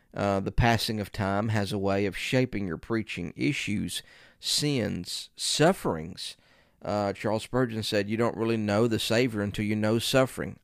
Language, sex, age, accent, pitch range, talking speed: English, male, 40-59, American, 100-120 Hz, 165 wpm